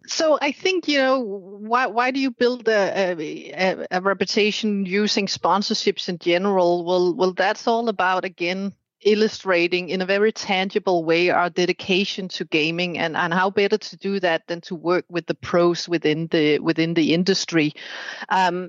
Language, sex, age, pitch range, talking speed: English, female, 30-49, 175-210 Hz, 170 wpm